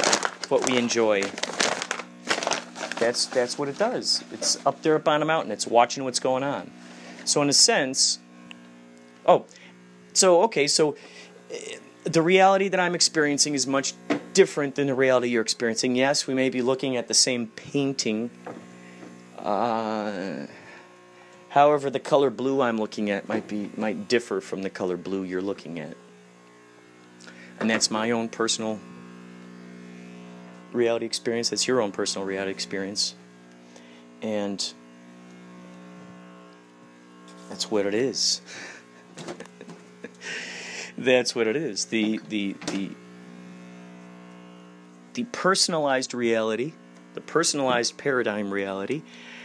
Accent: American